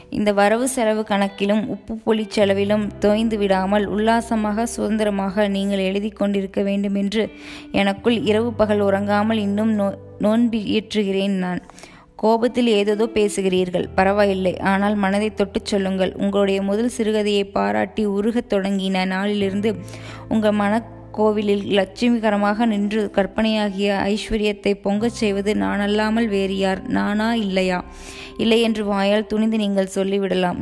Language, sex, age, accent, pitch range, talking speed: Tamil, female, 20-39, native, 195-215 Hz, 110 wpm